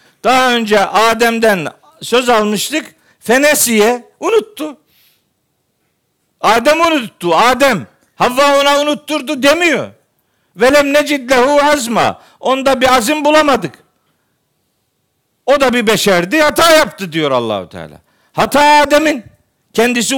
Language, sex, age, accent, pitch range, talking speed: Turkish, male, 50-69, native, 215-295 Hz, 105 wpm